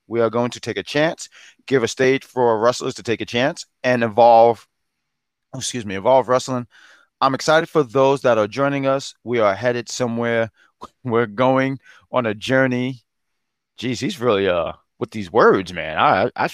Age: 30-49